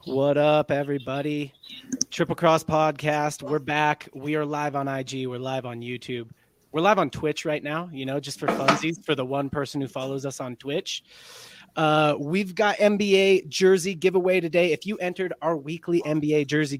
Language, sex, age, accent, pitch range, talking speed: English, male, 30-49, American, 130-155 Hz, 180 wpm